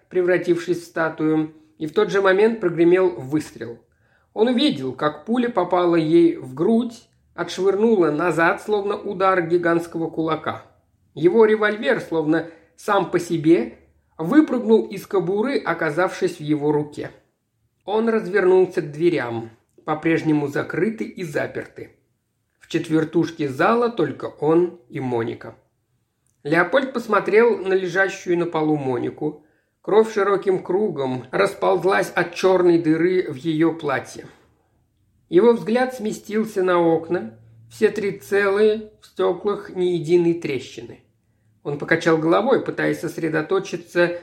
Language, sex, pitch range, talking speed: Russian, male, 150-200 Hz, 120 wpm